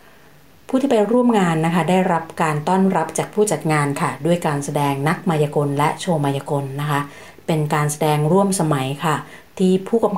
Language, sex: Thai, female